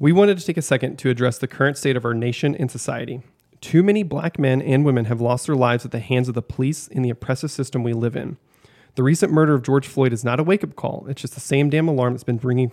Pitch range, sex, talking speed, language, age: 125-150 Hz, male, 280 wpm, English, 30-49